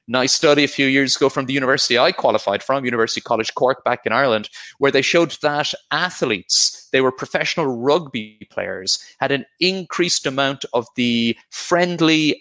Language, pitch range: English, 120-170 Hz